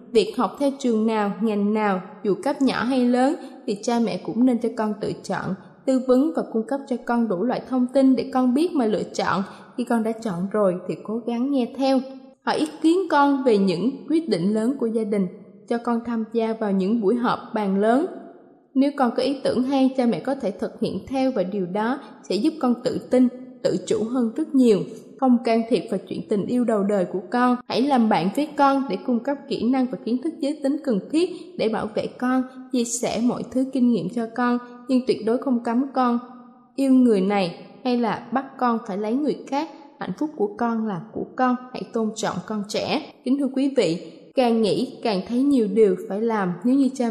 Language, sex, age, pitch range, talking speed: Vietnamese, female, 20-39, 210-260 Hz, 230 wpm